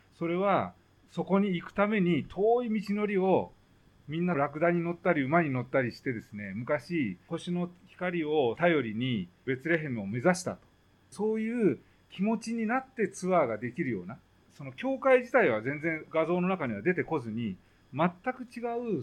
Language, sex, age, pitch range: Japanese, male, 40-59, 125-190 Hz